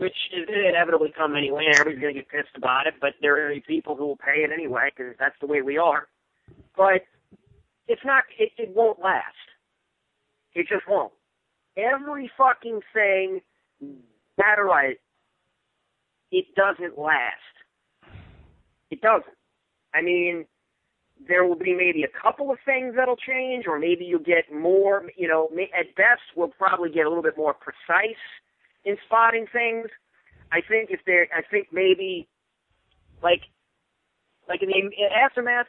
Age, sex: 50-69, male